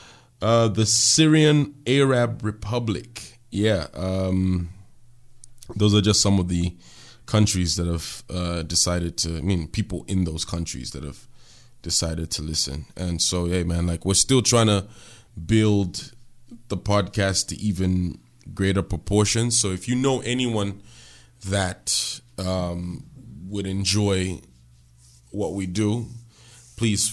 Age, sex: 20-39, male